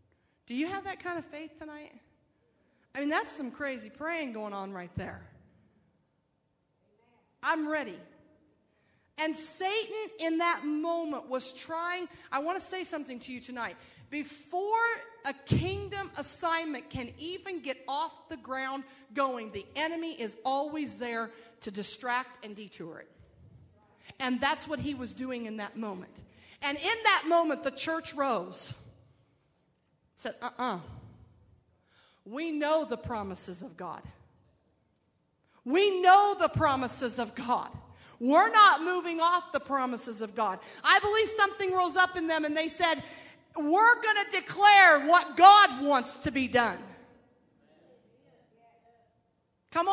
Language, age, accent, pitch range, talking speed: English, 40-59, American, 250-375 Hz, 140 wpm